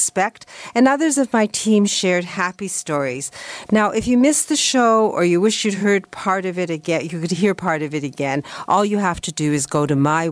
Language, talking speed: English, 225 wpm